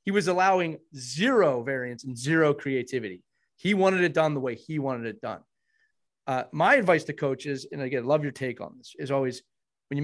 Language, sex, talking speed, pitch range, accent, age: English, male, 205 wpm, 135-180 Hz, American, 30-49